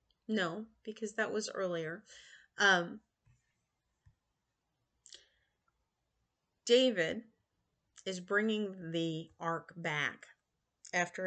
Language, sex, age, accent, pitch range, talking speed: English, female, 40-59, American, 165-210 Hz, 70 wpm